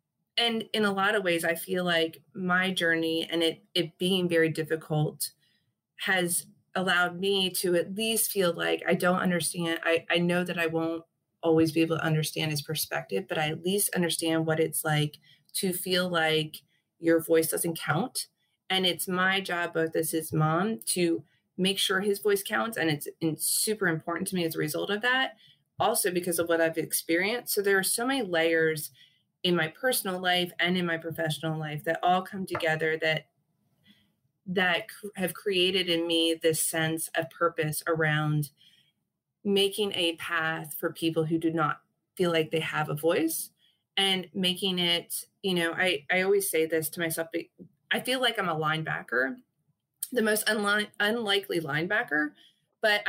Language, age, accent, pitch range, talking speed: English, 30-49, American, 160-190 Hz, 175 wpm